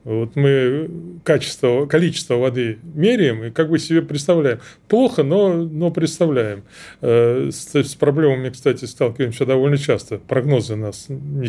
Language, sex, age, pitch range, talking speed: Russian, male, 20-39, 125-155 Hz, 130 wpm